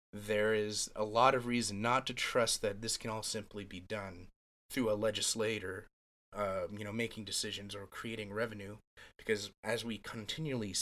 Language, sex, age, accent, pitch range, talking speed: English, male, 30-49, American, 95-115 Hz, 170 wpm